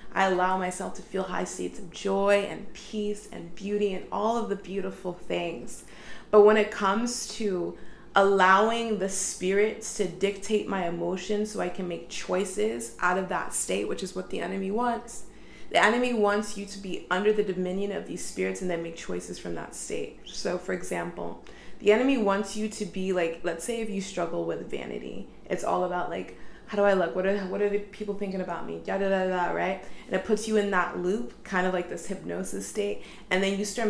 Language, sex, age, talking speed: English, female, 20-39, 215 wpm